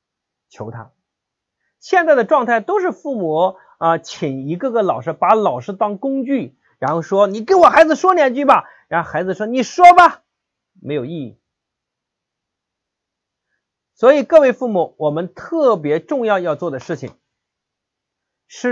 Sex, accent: male, native